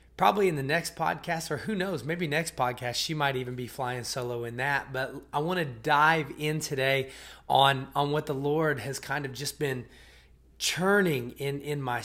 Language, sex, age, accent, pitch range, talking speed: English, male, 30-49, American, 130-160 Hz, 200 wpm